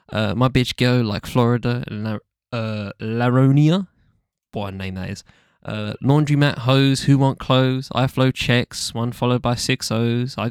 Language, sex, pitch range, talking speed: English, male, 110-135 Hz, 175 wpm